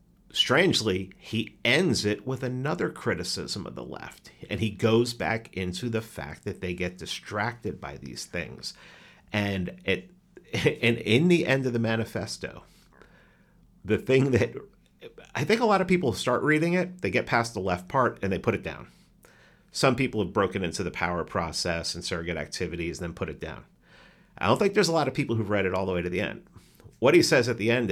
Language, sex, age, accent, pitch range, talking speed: English, male, 50-69, American, 95-130 Hz, 205 wpm